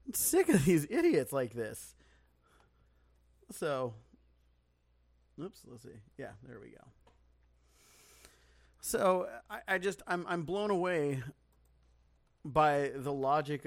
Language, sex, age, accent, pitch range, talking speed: English, male, 40-59, American, 115-175 Hz, 115 wpm